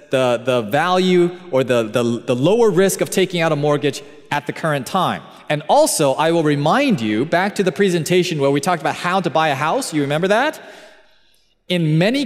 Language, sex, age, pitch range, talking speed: English, male, 30-49, 135-185 Hz, 205 wpm